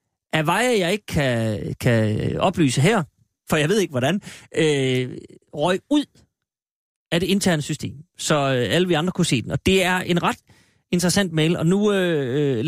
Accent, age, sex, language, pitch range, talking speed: native, 30-49, male, Danish, 145-205 Hz, 170 wpm